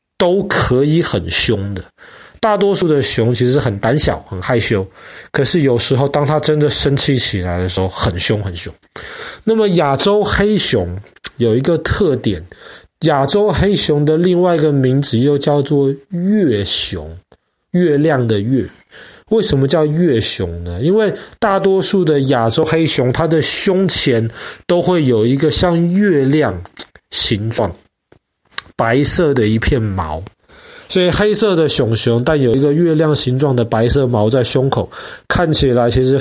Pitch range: 115-160 Hz